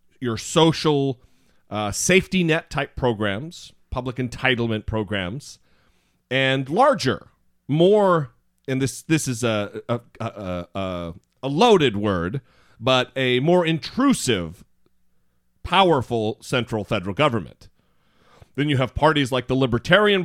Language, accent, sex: English, American, male